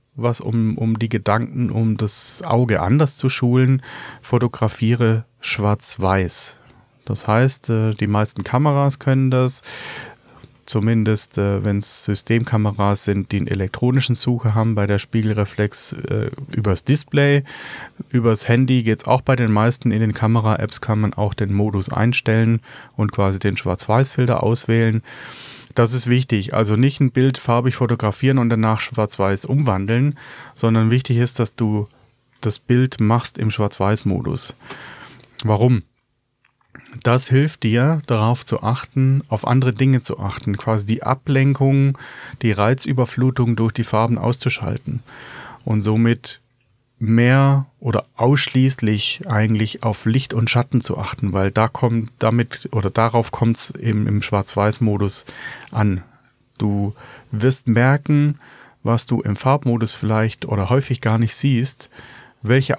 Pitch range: 110-130 Hz